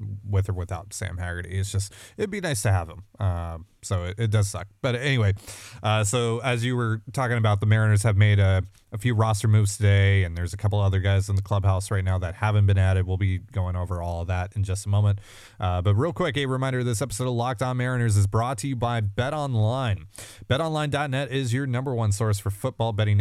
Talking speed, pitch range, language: 240 wpm, 100-120 Hz, English